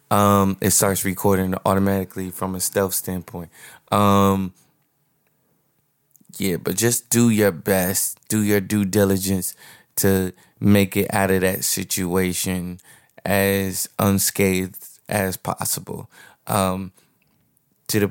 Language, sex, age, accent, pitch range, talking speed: English, male, 20-39, American, 95-105 Hz, 115 wpm